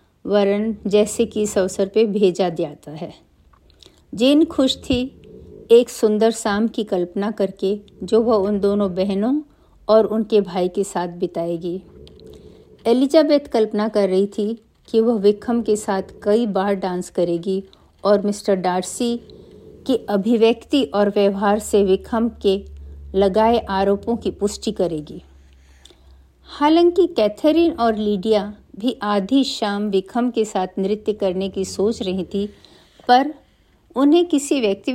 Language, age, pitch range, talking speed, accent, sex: Hindi, 50-69, 190-235 Hz, 135 wpm, native, female